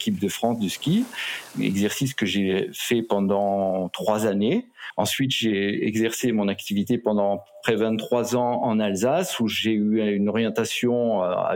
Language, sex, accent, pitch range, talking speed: French, male, French, 100-130 Hz, 150 wpm